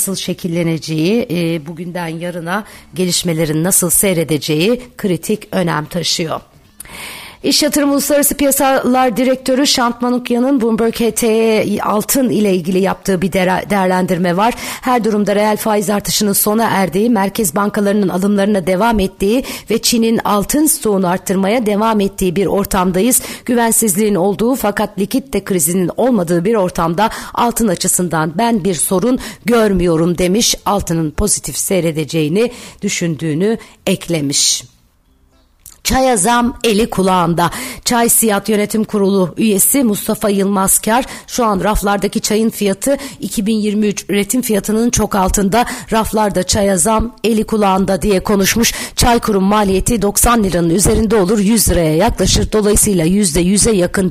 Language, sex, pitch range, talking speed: Turkish, female, 185-225 Hz, 120 wpm